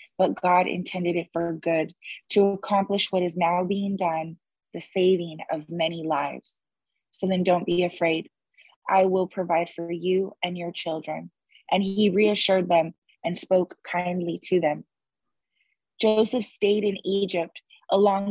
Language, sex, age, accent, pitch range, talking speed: English, female, 20-39, American, 175-195 Hz, 150 wpm